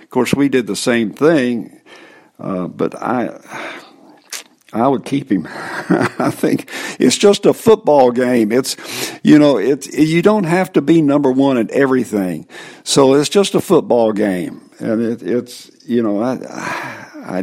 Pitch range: 110-160 Hz